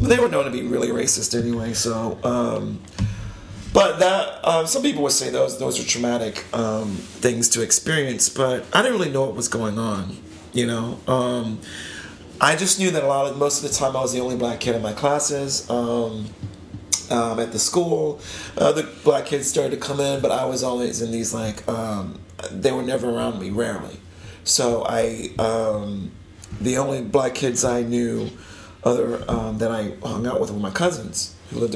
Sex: male